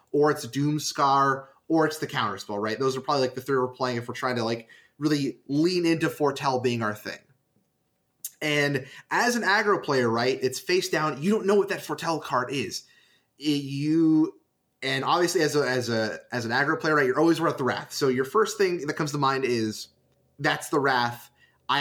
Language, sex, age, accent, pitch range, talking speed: English, male, 20-39, American, 130-175 Hz, 200 wpm